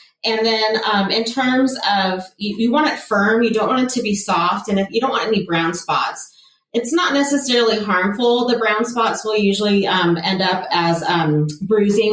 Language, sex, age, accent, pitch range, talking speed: English, female, 30-49, American, 165-220 Hz, 205 wpm